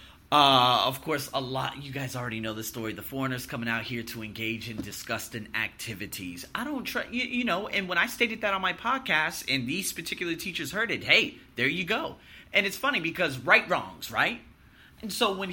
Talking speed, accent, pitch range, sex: 215 wpm, American, 135-225 Hz, male